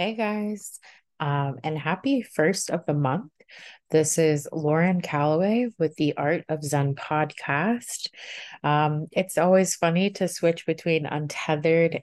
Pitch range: 150-195 Hz